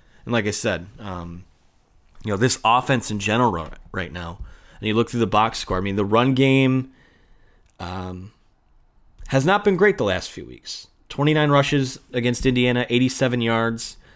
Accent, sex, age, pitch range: American, male, 20-39, 95-130 Hz